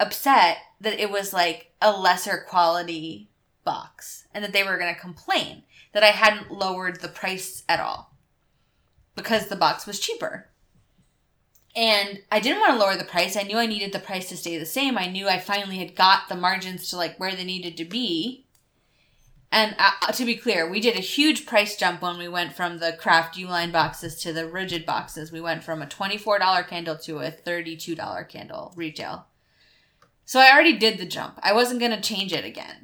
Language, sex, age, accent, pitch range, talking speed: English, female, 20-39, American, 180-225 Hz, 200 wpm